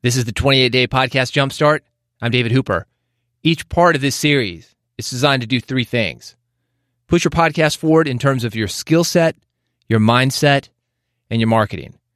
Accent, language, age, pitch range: American, English, 30-49, 115-135 Hz